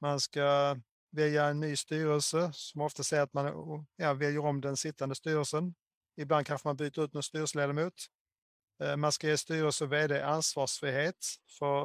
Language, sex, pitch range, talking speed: Swedish, male, 135-155 Hz, 155 wpm